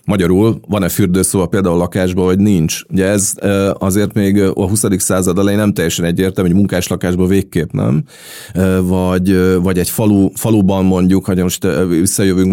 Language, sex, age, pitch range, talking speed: Hungarian, male, 30-49, 90-100 Hz, 155 wpm